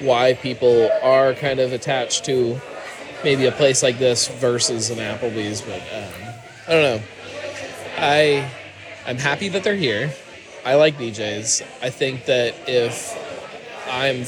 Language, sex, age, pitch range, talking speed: English, male, 20-39, 115-140 Hz, 145 wpm